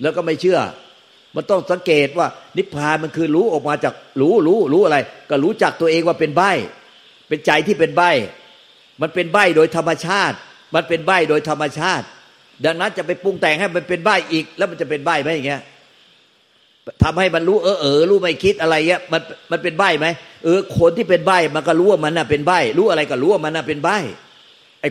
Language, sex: Thai, male